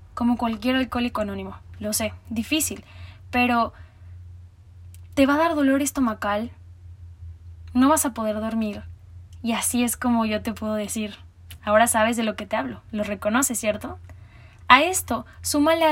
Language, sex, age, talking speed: Spanish, female, 10-29, 150 wpm